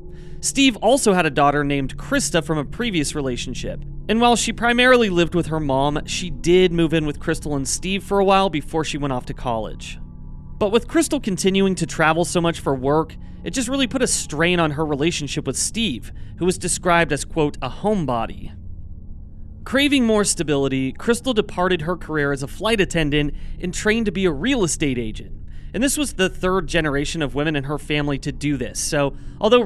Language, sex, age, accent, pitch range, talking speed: English, male, 30-49, American, 145-205 Hz, 200 wpm